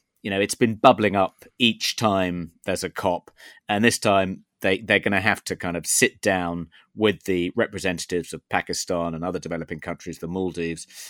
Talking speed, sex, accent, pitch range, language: 185 wpm, male, British, 95-120 Hz, English